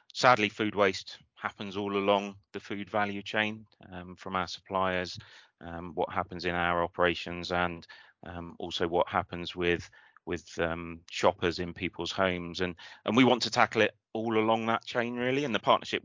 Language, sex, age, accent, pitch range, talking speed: English, male, 30-49, British, 85-100 Hz, 175 wpm